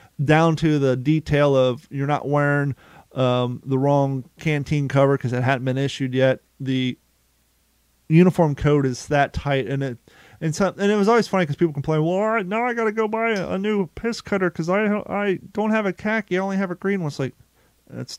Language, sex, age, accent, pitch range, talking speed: English, male, 30-49, American, 135-175 Hz, 215 wpm